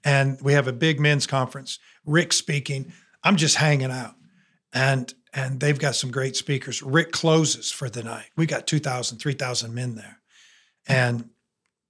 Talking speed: 160 wpm